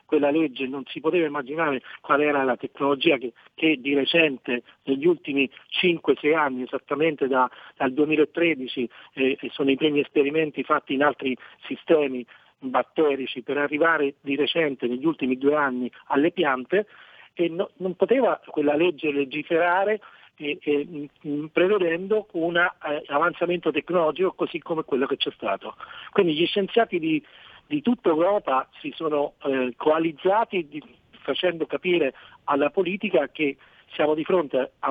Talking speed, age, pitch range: 140 wpm, 40-59, 140-175 Hz